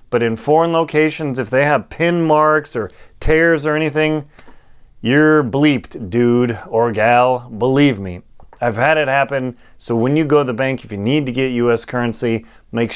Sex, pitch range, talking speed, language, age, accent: male, 120-160 Hz, 180 wpm, English, 30-49, American